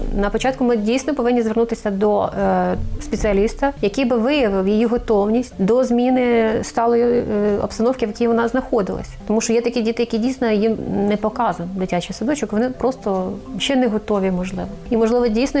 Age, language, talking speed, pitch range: 30-49, Ukrainian, 170 wpm, 205-240 Hz